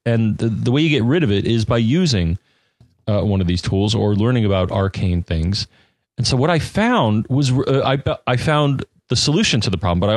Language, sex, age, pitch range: English, male, 30-49, 95-120 Hz